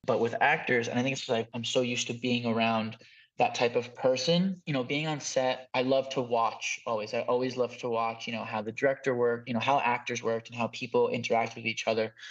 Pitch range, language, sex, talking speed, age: 120-135 Hz, English, male, 250 wpm, 20-39